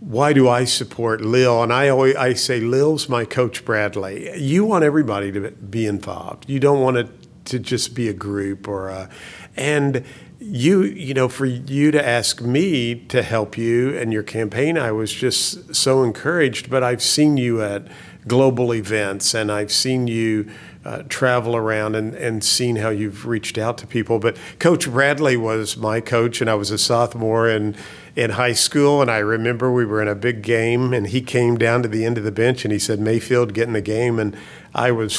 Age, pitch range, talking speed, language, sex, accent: 50-69, 110-130 Hz, 205 wpm, English, male, American